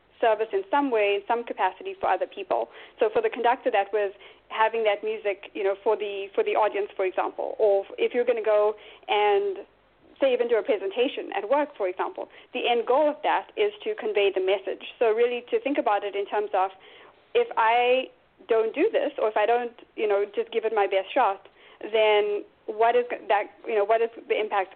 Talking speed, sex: 220 wpm, female